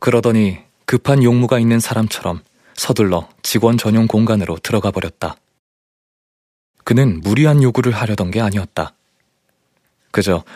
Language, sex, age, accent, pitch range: Korean, male, 20-39, native, 95-120 Hz